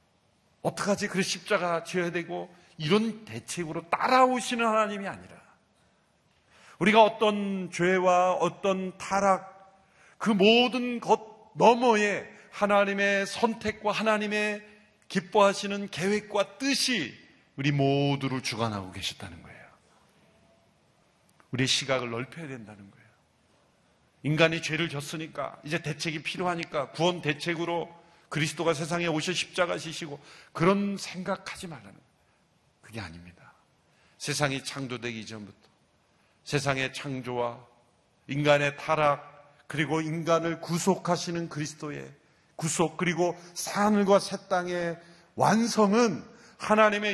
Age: 40-59